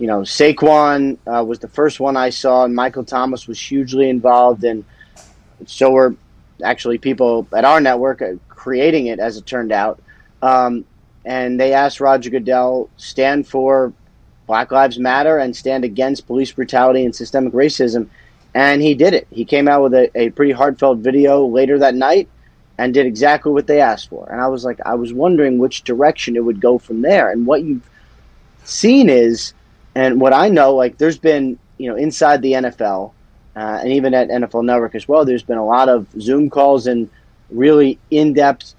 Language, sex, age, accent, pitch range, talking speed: English, male, 30-49, American, 120-140 Hz, 185 wpm